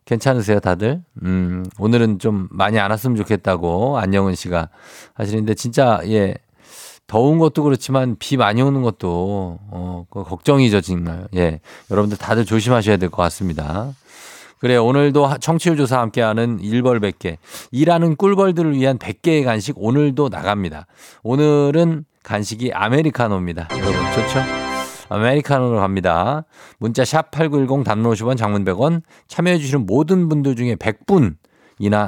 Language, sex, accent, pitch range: Korean, male, native, 95-140 Hz